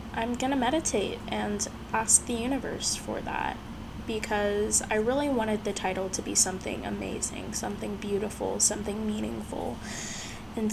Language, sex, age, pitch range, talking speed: English, female, 20-39, 205-240 Hz, 140 wpm